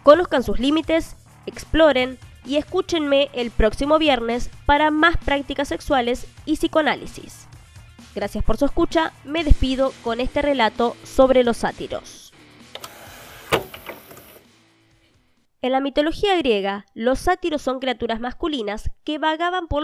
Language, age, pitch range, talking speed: Spanish, 20-39, 235-310 Hz, 120 wpm